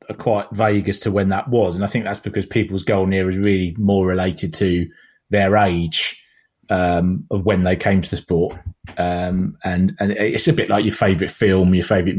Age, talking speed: 30-49, 210 wpm